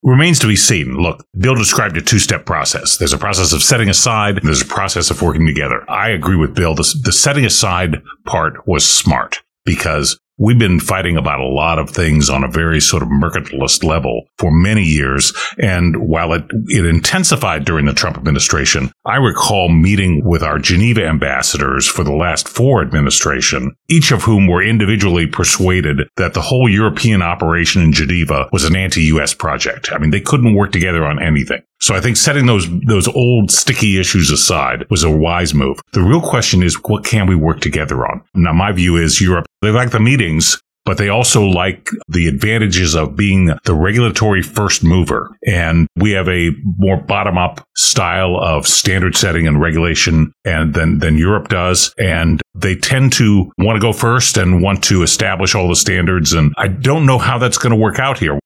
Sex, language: male, English